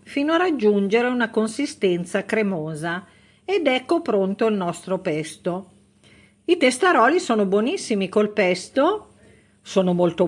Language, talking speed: Italian, 115 wpm